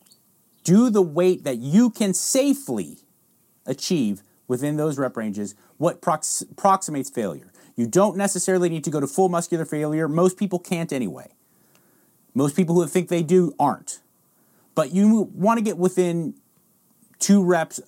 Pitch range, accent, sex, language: 130-180 Hz, American, male, English